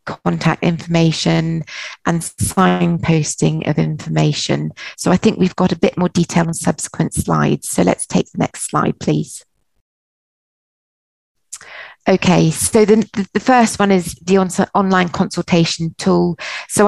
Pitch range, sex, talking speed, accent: 155-185 Hz, female, 130 wpm, British